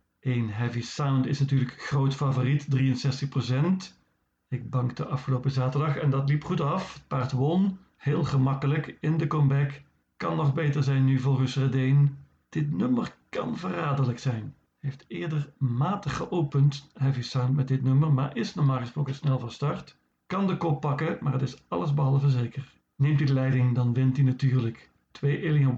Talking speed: 170 wpm